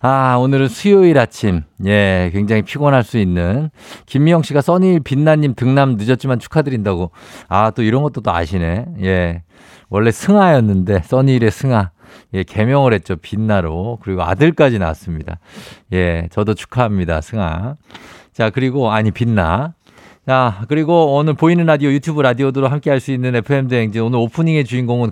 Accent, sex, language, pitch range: native, male, Korean, 100-140 Hz